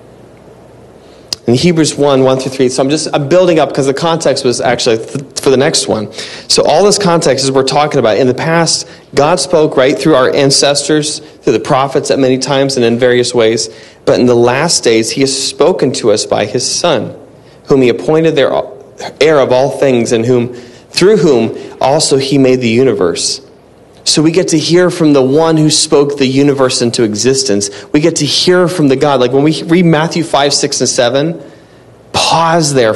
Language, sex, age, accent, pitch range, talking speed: English, male, 40-59, American, 125-165 Hz, 200 wpm